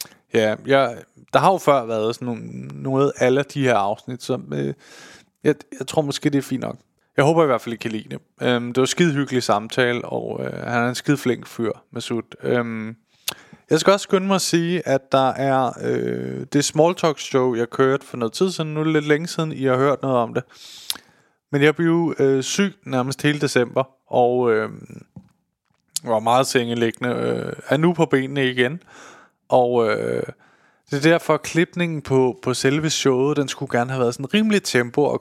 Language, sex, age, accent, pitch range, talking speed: Danish, male, 20-39, native, 125-155 Hz, 205 wpm